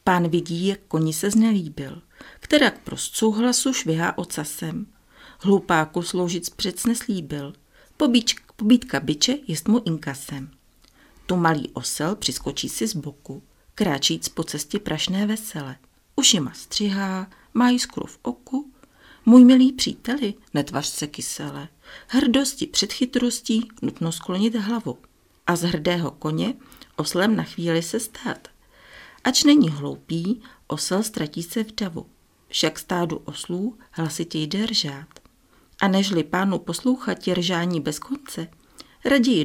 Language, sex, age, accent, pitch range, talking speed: Czech, female, 50-69, native, 160-235 Hz, 130 wpm